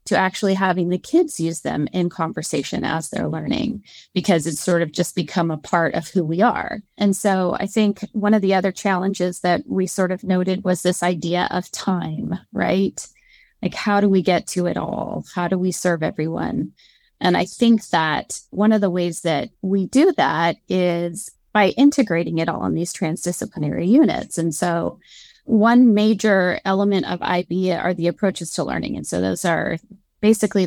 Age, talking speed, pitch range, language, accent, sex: 20-39, 185 wpm, 175-215 Hz, English, American, female